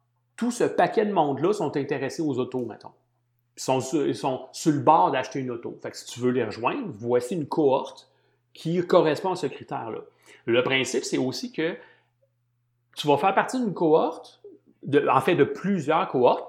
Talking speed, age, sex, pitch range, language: 190 wpm, 30-49, male, 120-160 Hz, French